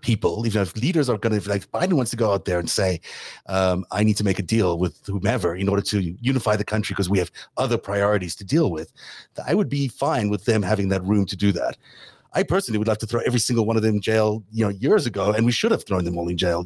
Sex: male